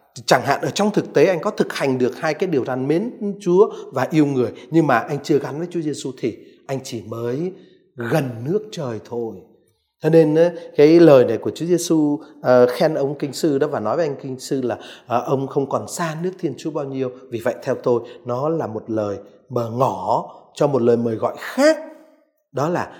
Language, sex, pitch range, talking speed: Vietnamese, male, 130-170 Hz, 220 wpm